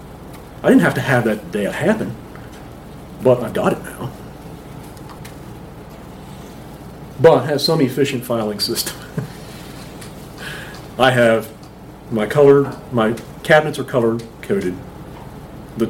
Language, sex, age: English, male, 40-59